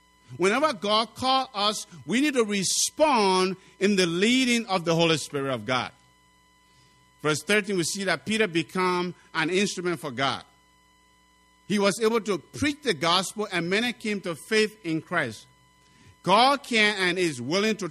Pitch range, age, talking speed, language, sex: 160-220 Hz, 50-69, 160 wpm, English, male